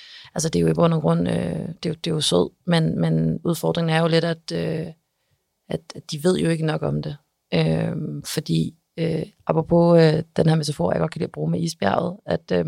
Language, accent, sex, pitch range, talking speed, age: Danish, native, female, 140-175 Hz, 230 wpm, 40-59